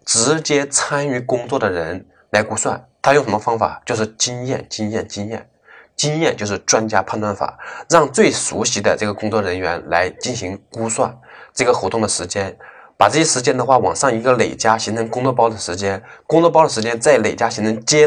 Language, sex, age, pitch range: Chinese, male, 20-39, 105-135 Hz